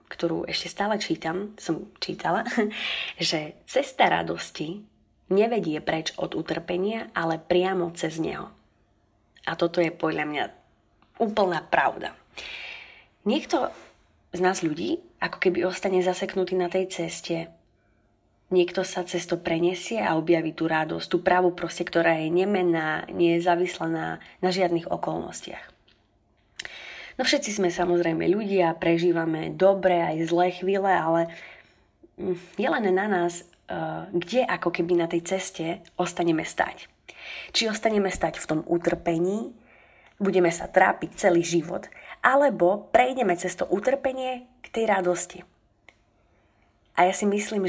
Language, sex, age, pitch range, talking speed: Slovak, female, 20-39, 165-190 Hz, 125 wpm